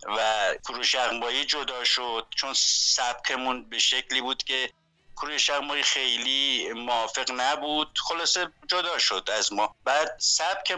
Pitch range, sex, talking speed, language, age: 125-160 Hz, male, 125 wpm, Persian, 60-79